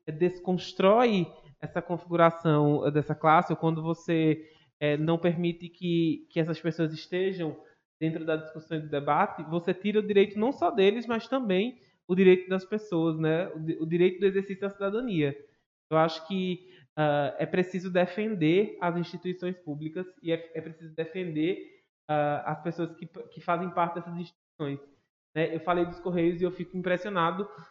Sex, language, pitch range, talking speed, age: male, Portuguese, 160-185 Hz, 165 wpm, 20-39